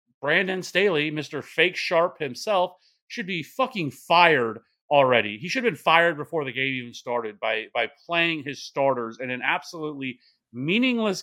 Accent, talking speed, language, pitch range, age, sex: American, 160 wpm, English, 135-185 Hz, 30-49, male